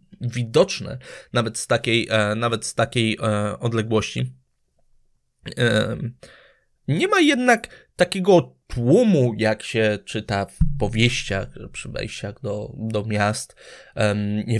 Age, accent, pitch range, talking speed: 20-39, native, 105-125 Hz, 100 wpm